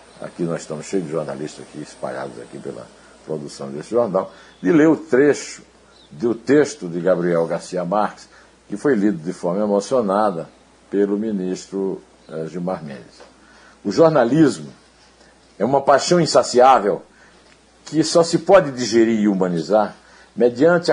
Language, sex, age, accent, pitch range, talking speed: Portuguese, male, 60-79, Brazilian, 95-150 Hz, 135 wpm